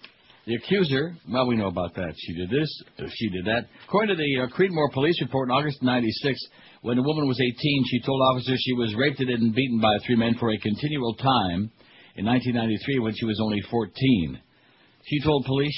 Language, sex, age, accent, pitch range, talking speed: English, male, 60-79, American, 110-135 Hz, 200 wpm